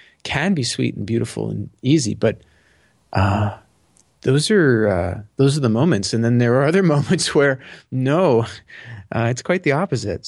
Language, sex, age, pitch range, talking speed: English, male, 30-49, 110-135 Hz, 170 wpm